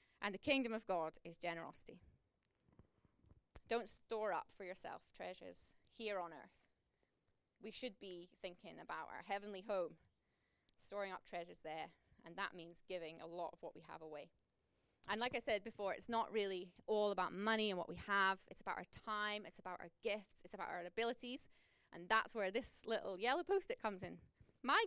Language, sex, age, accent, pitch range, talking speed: English, female, 20-39, British, 185-230 Hz, 185 wpm